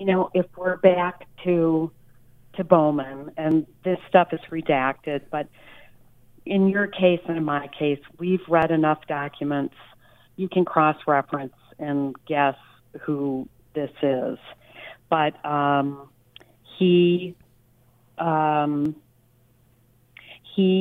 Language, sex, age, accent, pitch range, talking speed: English, female, 50-69, American, 140-170 Hz, 110 wpm